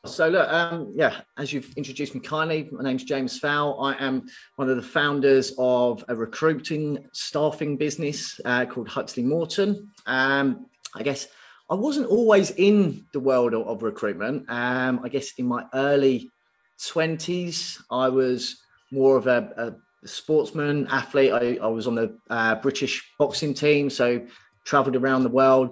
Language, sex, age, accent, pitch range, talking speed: English, male, 30-49, British, 120-155 Hz, 160 wpm